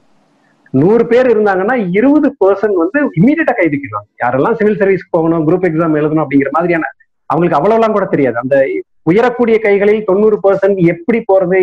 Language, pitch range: Tamil, 145-210 Hz